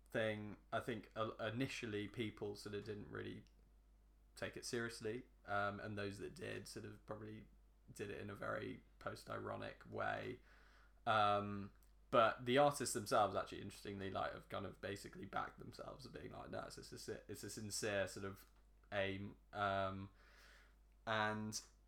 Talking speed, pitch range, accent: 155 wpm, 100-110 Hz, British